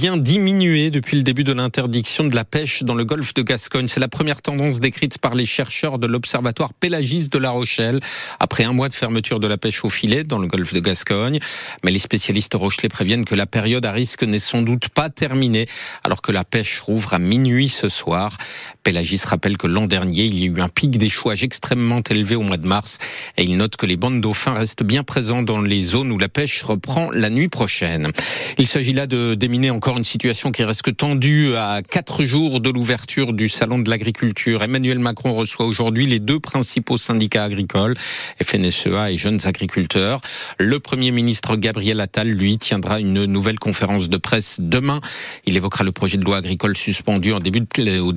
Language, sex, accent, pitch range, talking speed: French, male, French, 105-130 Hz, 200 wpm